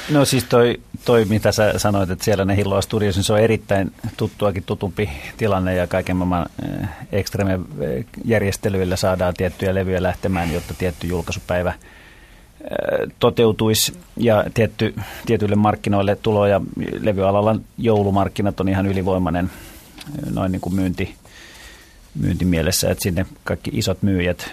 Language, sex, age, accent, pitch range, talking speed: Finnish, male, 30-49, native, 90-105 Hz, 115 wpm